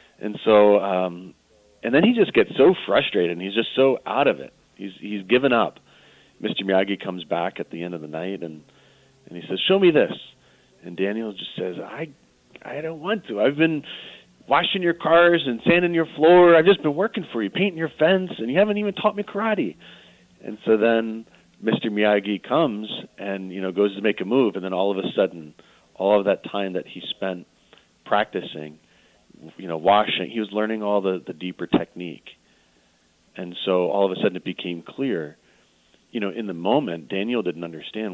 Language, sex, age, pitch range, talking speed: English, male, 40-59, 85-110 Hz, 200 wpm